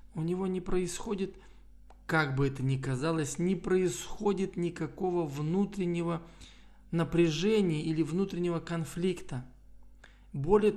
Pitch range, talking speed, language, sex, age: 155-190 Hz, 100 wpm, Russian, male, 20-39